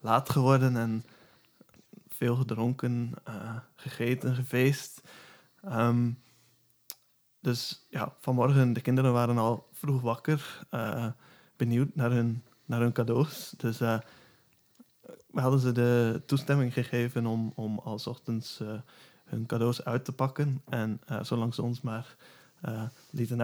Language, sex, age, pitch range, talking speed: Dutch, male, 20-39, 120-135 Hz, 135 wpm